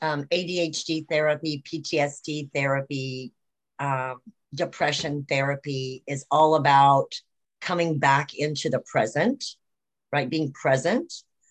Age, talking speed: 50-69, 100 wpm